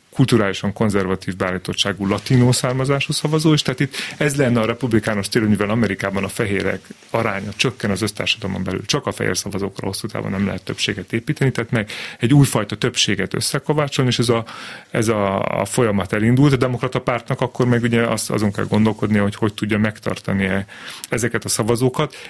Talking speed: 165 wpm